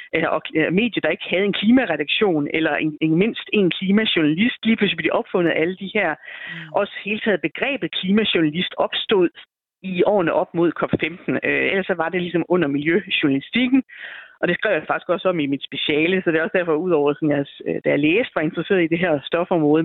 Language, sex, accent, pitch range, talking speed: Danish, female, native, 160-210 Hz, 210 wpm